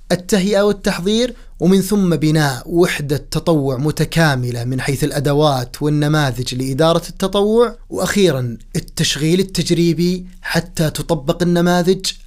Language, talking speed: Arabic, 100 wpm